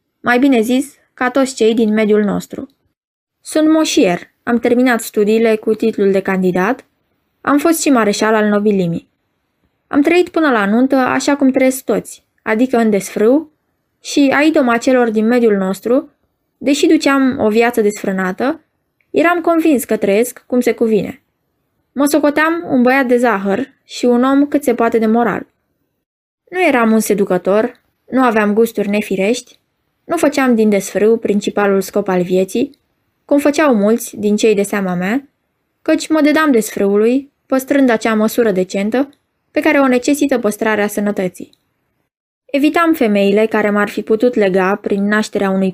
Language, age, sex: Romanian, 20-39, female